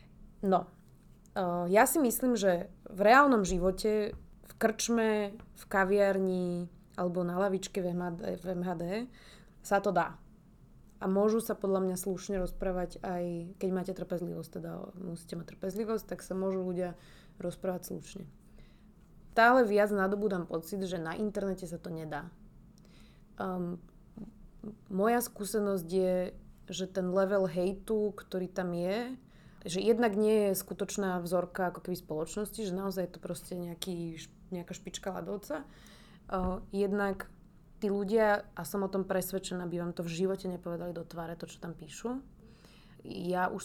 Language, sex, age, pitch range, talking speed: Slovak, female, 20-39, 180-200 Hz, 145 wpm